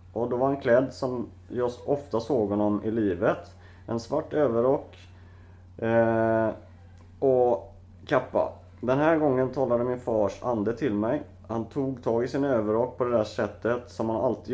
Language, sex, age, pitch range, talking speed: Swedish, male, 30-49, 95-120 Hz, 165 wpm